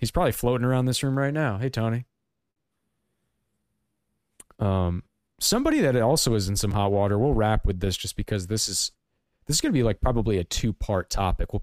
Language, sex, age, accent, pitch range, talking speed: English, male, 30-49, American, 100-125 Hz, 195 wpm